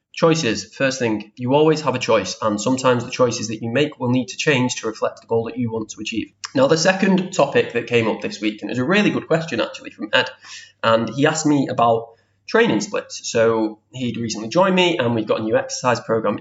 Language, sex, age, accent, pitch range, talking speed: English, male, 20-39, British, 110-140 Hz, 240 wpm